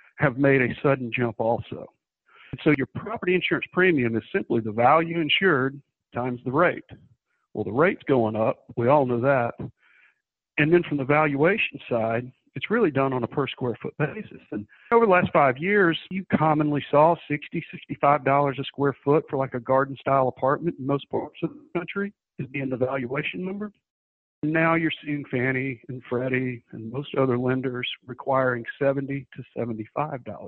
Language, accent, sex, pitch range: English, American, male, 125-155 Hz